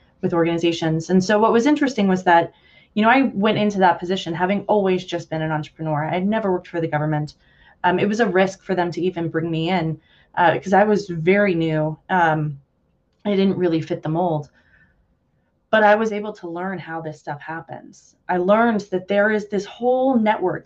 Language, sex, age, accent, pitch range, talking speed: English, female, 20-39, American, 170-210 Hz, 205 wpm